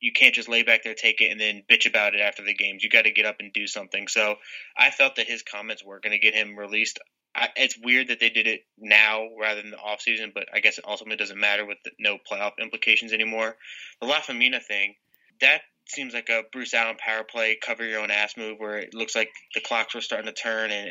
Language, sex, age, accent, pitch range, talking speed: English, male, 20-39, American, 105-115 Hz, 255 wpm